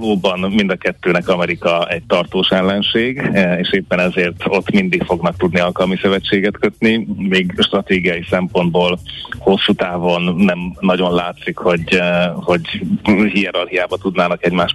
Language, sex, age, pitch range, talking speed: Hungarian, male, 30-49, 90-105 Hz, 120 wpm